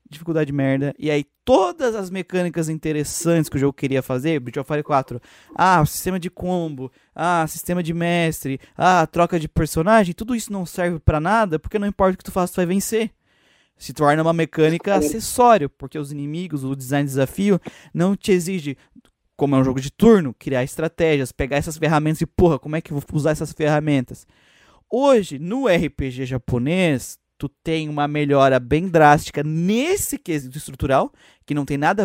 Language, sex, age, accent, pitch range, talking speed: Portuguese, male, 20-39, Brazilian, 140-175 Hz, 180 wpm